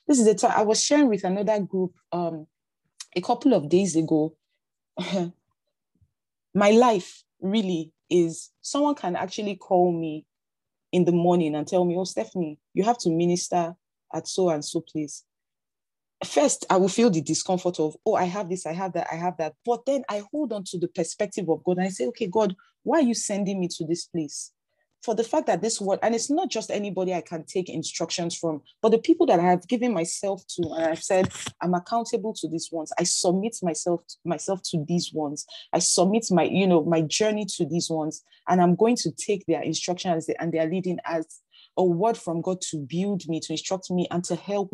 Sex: female